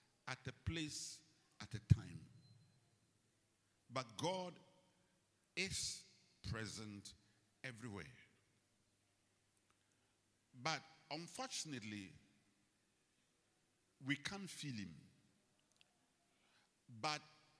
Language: English